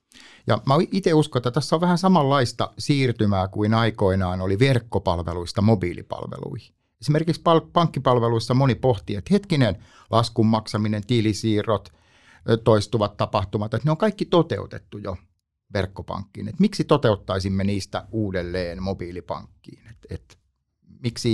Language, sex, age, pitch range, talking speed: Finnish, male, 60-79, 95-130 Hz, 115 wpm